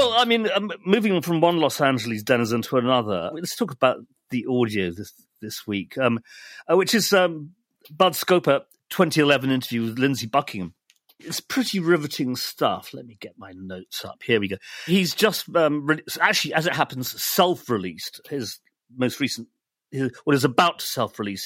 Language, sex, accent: English, male, British